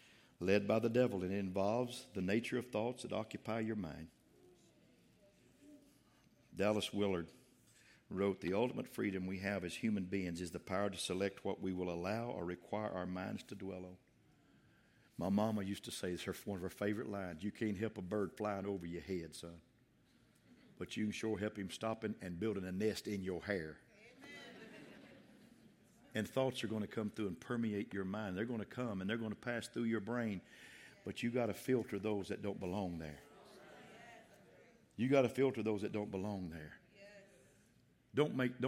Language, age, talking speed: English, 60-79, 185 wpm